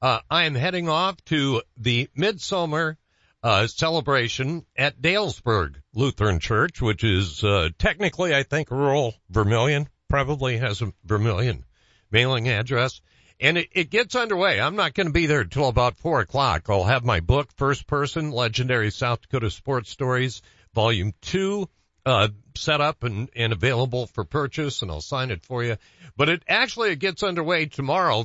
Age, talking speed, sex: 60-79, 165 wpm, male